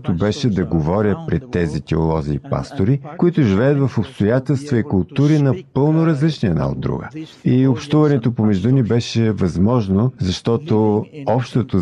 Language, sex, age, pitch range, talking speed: Bulgarian, male, 50-69, 100-135 Hz, 135 wpm